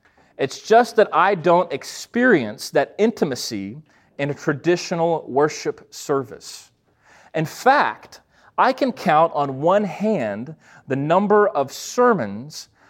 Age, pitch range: 30-49, 130-190 Hz